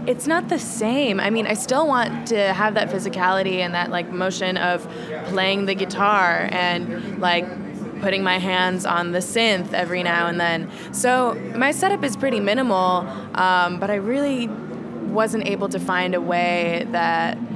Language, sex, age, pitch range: English, female, 20-39, 175-220 Hz